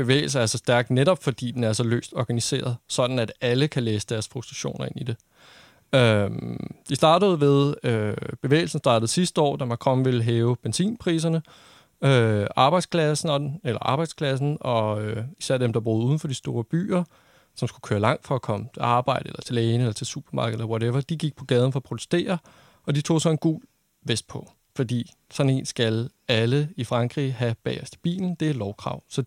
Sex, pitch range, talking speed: male, 120-155 Hz, 195 wpm